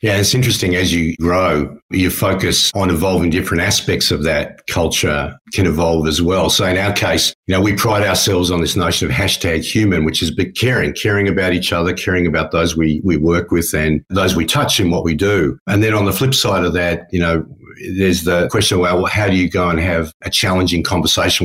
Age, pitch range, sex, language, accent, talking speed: 50-69, 85-105 Hz, male, English, Australian, 220 wpm